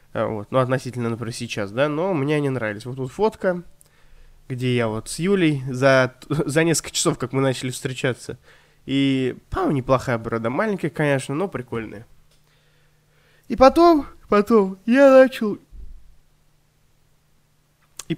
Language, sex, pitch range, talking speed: Russian, male, 125-170 Hz, 130 wpm